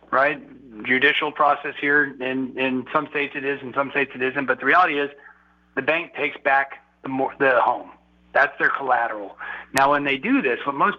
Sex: male